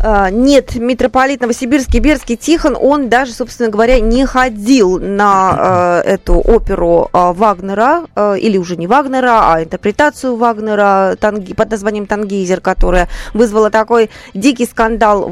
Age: 20-39